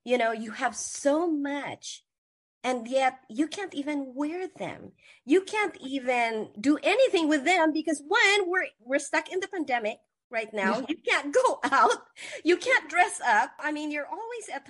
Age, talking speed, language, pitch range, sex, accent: 40-59, 175 wpm, English, 240-325 Hz, female, American